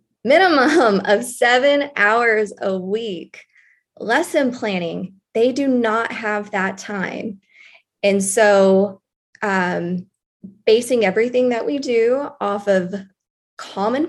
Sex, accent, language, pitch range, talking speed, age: female, American, English, 195-255 Hz, 105 wpm, 20-39